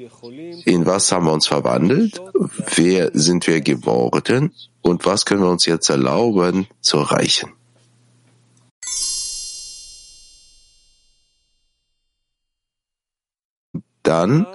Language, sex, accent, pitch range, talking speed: German, male, German, 85-125 Hz, 85 wpm